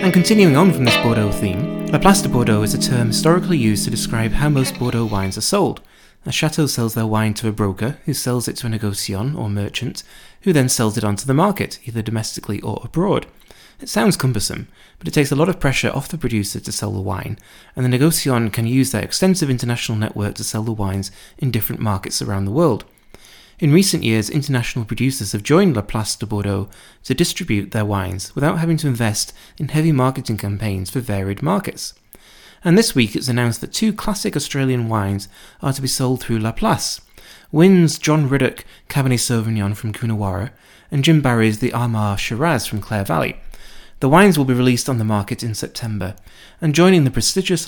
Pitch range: 105-150 Hz